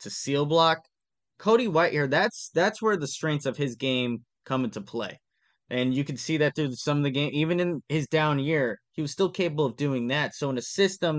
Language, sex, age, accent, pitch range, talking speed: English, male, 20-39, American, 130-160 Hz, 225 wpm